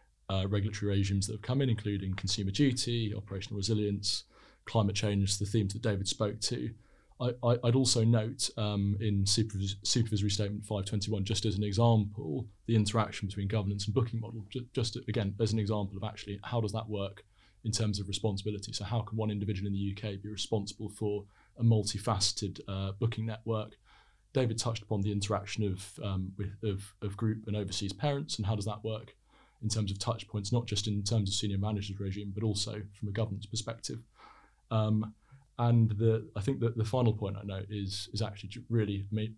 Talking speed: 185 wpm